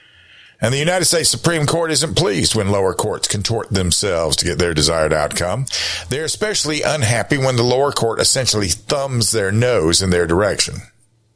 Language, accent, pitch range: English, American, 95-125 Hz